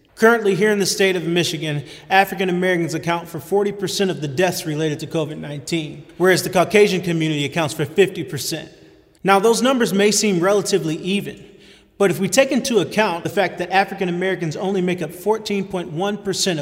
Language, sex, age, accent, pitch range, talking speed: English, male, 30-49, American, 165-195 Hz, 170 wpm